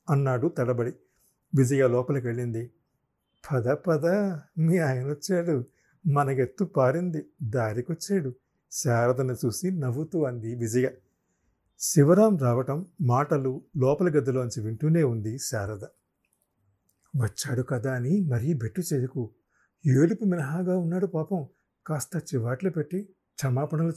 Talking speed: 105 wpm